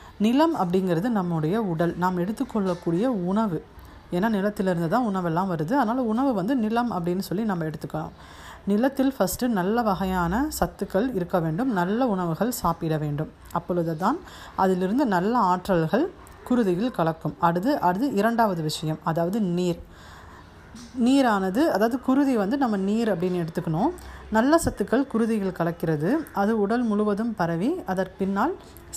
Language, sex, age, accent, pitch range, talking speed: Tamil, female, 30-49, native, 175-230 Hz, 130 wpm